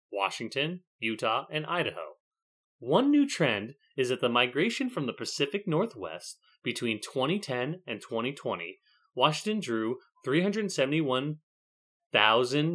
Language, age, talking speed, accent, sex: English, 30-49, 105 wpm, American, male